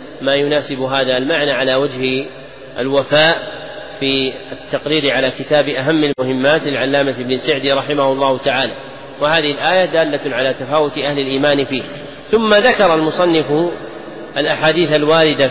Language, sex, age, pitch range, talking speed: Arabic, male, 40-59, 135-155 Hz, 125 wpm